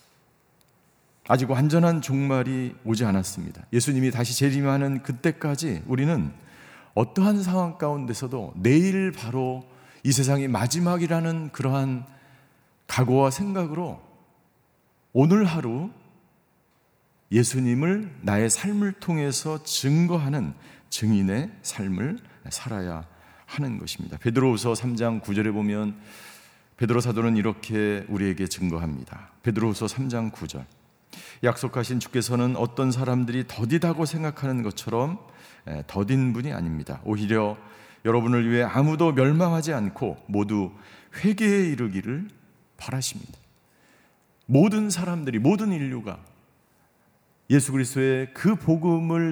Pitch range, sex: 115-160 Hz, male